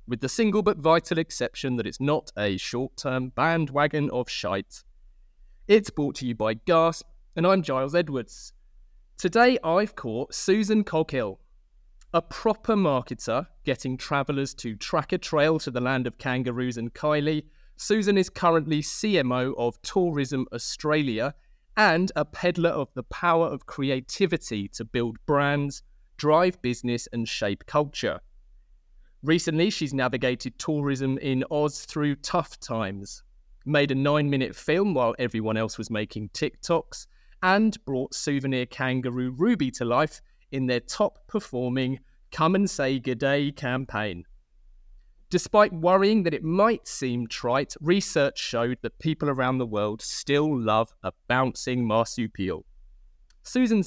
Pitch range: 125-165 Hz